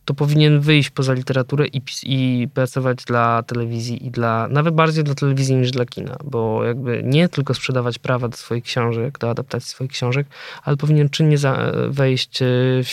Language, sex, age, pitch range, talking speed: Polish, male, 20-39, 125-145 Hz, 180 wpm